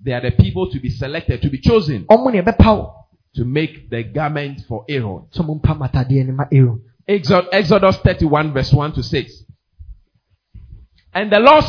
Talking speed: 130 wpm